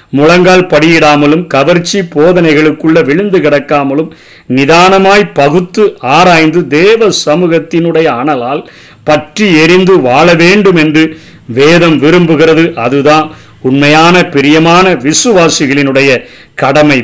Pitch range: 140-160 Hz